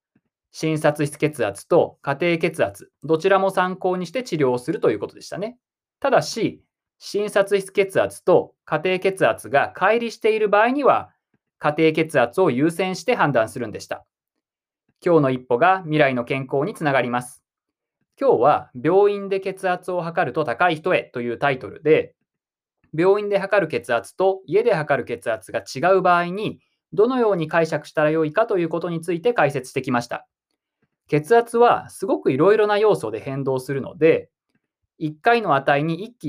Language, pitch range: Japanese, 150-200 Hz